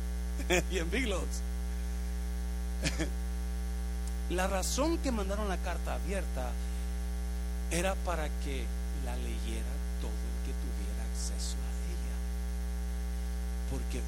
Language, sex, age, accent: Spanish, male, 50-69, Mexican